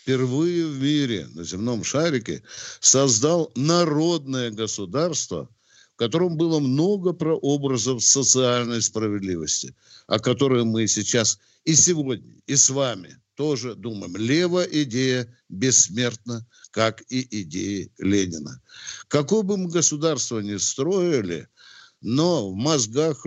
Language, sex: Russian, male